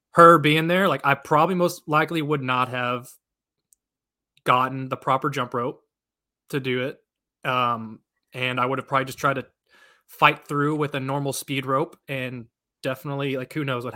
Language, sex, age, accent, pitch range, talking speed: English, male, 20-39, American, 125-150 Hz, 175 wpm